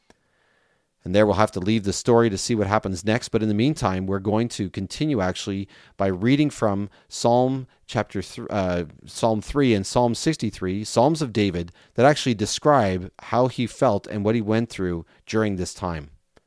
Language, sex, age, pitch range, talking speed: English, male, 30-49, 90-120 Hz, 185 wpm